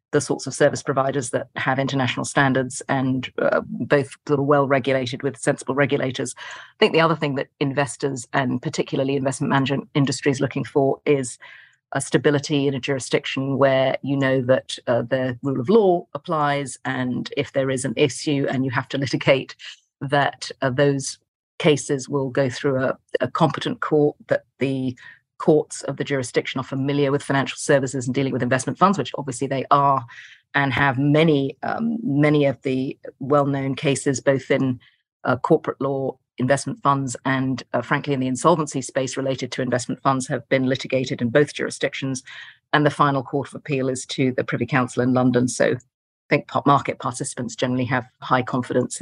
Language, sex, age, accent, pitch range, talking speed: English, female, 40-59, British, 130-145 Hz, 180 wpm